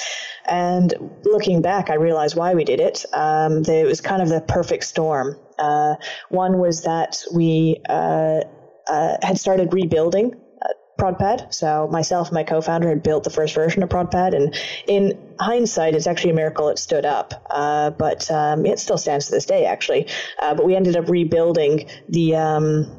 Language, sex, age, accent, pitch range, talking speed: English, female, 20-39, American, 155-180 Hz, 175 wpm